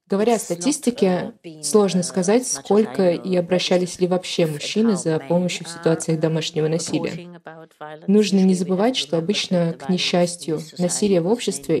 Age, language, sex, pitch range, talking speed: 20-39, Russian, female, 165-190 Hz, 135 wpm